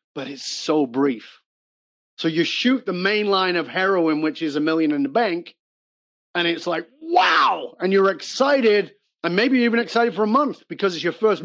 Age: 40-59